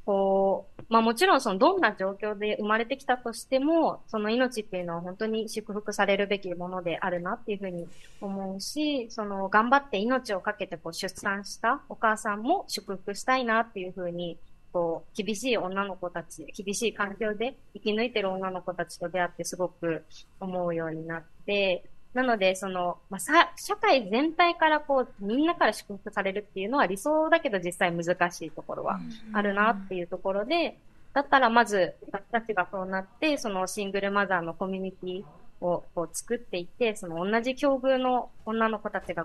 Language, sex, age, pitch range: Japanese, female, 20-39, 180-230 Hz